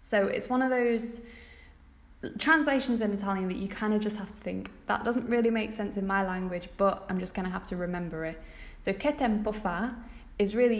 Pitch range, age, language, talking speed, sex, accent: 185-235 Hz, 10-29, English, 215 wpm, female, British